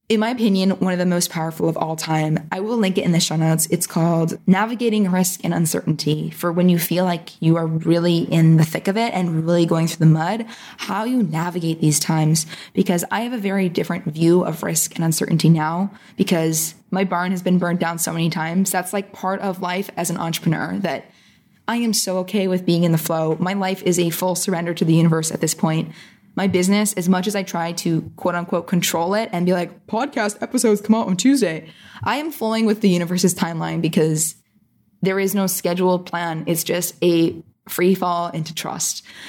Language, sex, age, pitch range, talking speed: English, female, 20-39, 165-200 Hz, 215 wpm